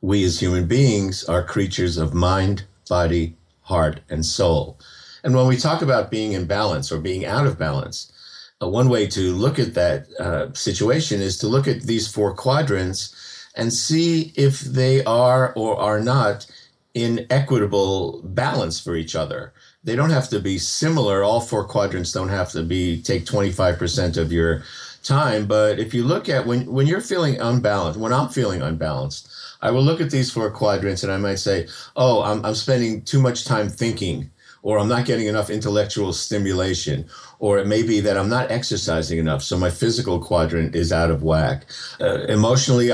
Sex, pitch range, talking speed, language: male, 90-125 Hz, 185 wpm, English